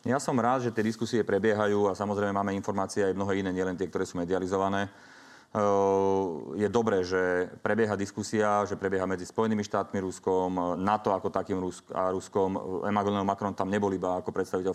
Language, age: Slovak, 30-49